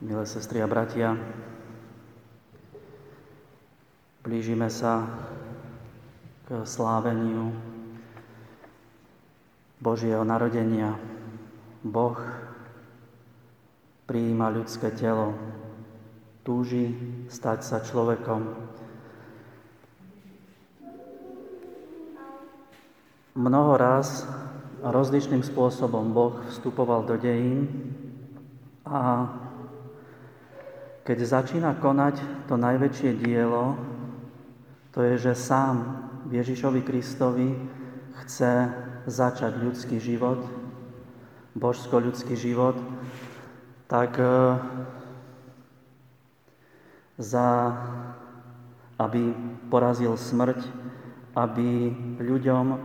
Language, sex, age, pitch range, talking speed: Slovak, male, 30-49, 115-130 Hz, 60 wpm